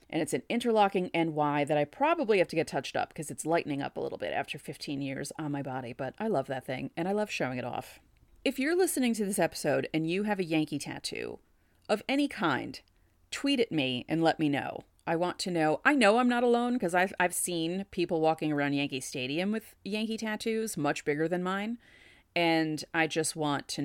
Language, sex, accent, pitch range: English, female, American, 155-225 Hz